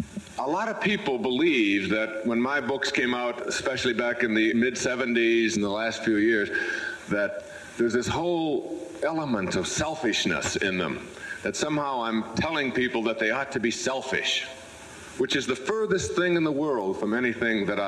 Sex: male